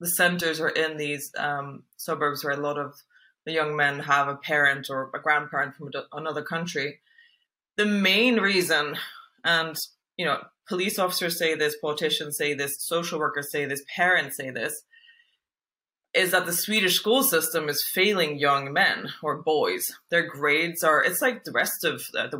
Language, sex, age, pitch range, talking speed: English, female, 20-39, 145-175 Hz, 170 wpm